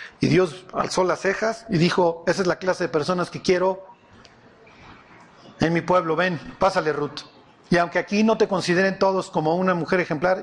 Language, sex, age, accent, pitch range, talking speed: Spanish, male, 40-59, Mexican, 165-200 Hz, 185 wpm